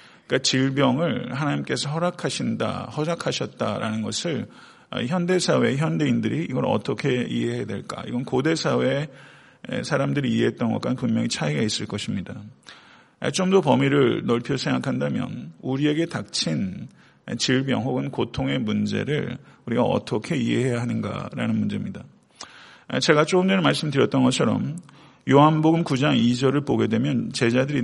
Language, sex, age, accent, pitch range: Korean, male, 40-59, native, 120-155 Hz